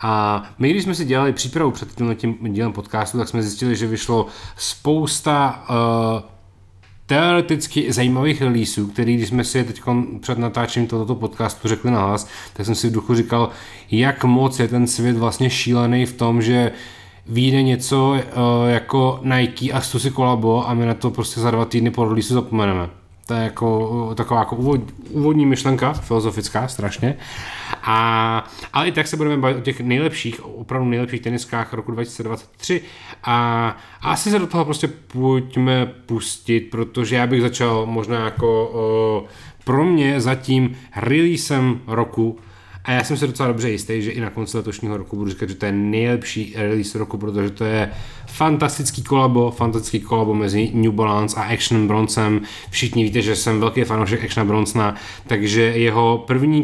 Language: Czech